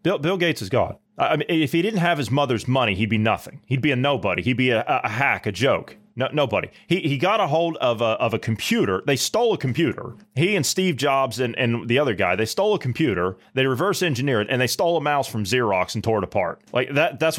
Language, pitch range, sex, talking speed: English, 115-165 Hz, male, 260 wpm